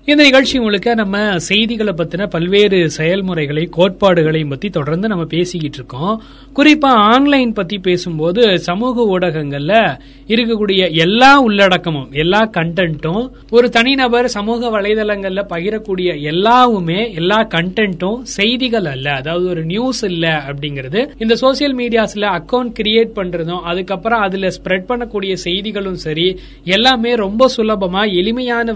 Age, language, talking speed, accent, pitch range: 30-49, Tamil, 115 wpm, native, 175-230 Hz